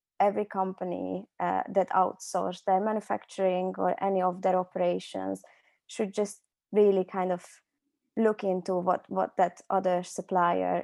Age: 20-39